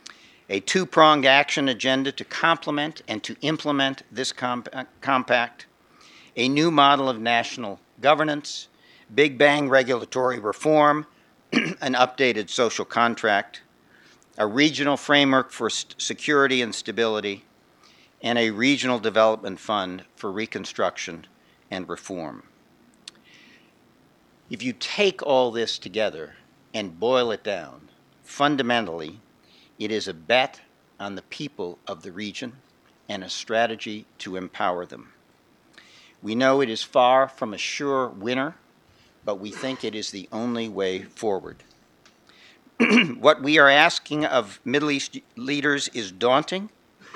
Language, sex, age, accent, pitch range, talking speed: English, male, 60-79, American, 110-145 Hz, 120 wpm